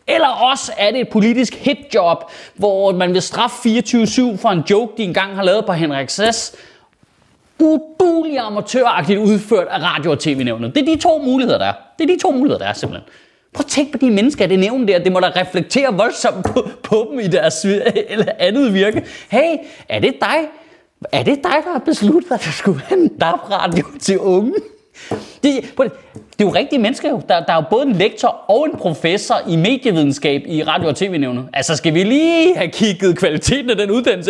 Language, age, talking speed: Danish, 30-49, 210 wpm